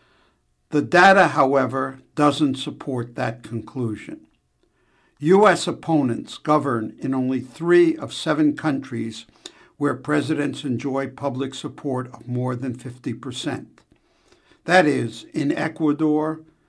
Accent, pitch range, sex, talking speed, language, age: American, 130-165 Hz, male, 105 wpm, English, 60-79